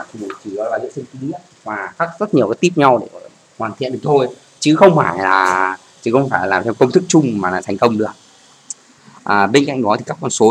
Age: 20-39